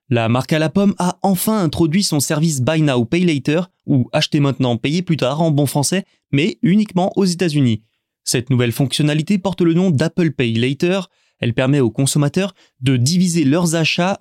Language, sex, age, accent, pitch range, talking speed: French, male, 20-39, French, 135-175 Hz, 185 wpm